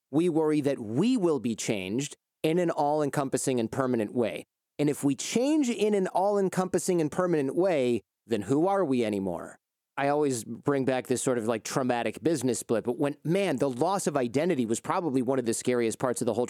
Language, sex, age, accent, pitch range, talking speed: English, male, 30-49, American, 120-155 Hz, 205 wpm